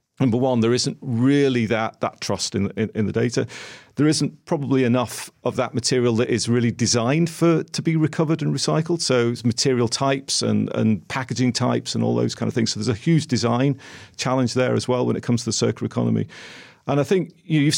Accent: British